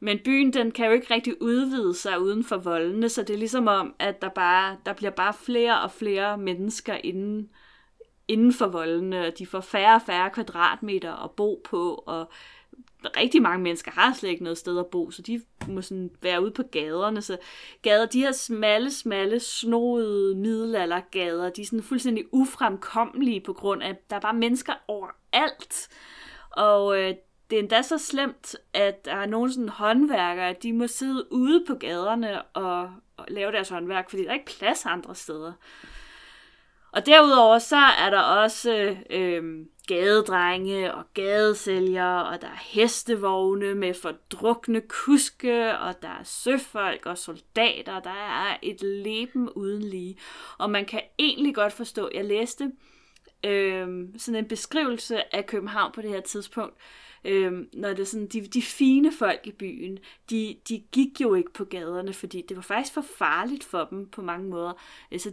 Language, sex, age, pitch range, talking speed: Danish, female, 30-49, 190-240 Hz, 175 wpm